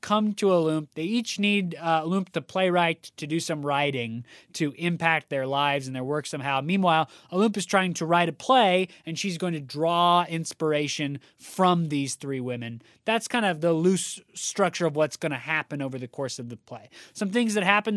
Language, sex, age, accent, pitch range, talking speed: English, male, 20-39, American, 135-185 Hz, 205 wpm